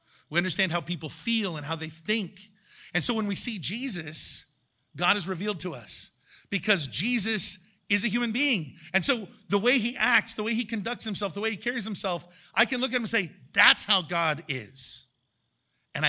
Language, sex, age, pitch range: English, male, 50-69, 155-210 Hz